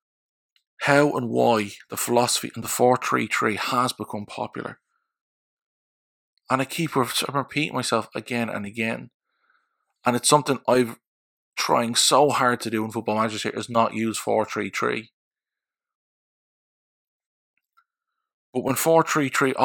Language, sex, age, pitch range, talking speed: English, male, 20-39, 110-155 Hz, 115 wpm